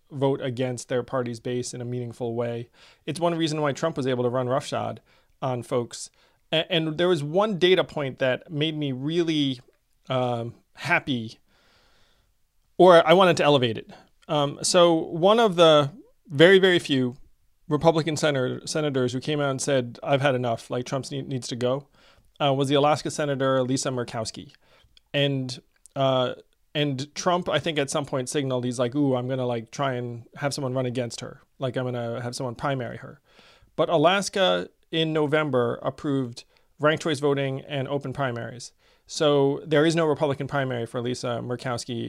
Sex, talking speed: male, 175 wpm